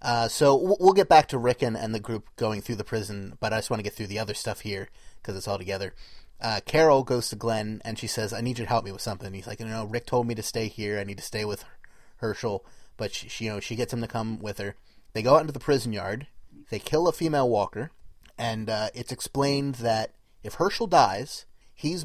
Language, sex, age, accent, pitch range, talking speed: English, male, 30-49, American, 110-125 Hz, 255 wpm